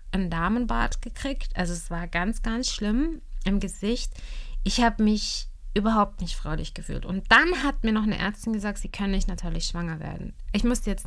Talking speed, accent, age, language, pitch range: 190 wpm, German, 20-39, German, 170-210 Hz